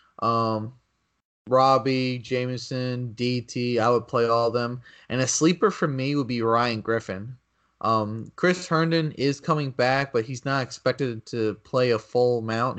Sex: male